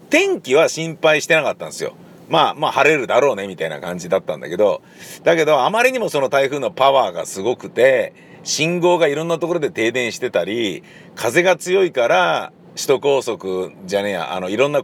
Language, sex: Japanese, male